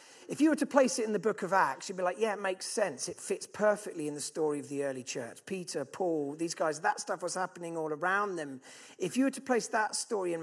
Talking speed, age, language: 270 wpm, 40-59, English